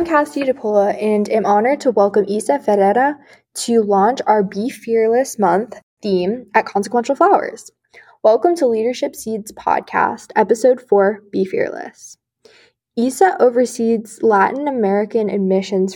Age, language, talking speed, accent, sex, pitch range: 10-29, English, 130 wpm, American, female, 200-250 Hz